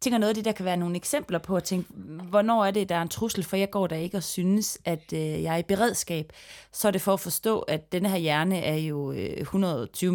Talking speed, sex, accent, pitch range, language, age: 280 wpm, female, native, 155-190 Hz, Danish, 30-49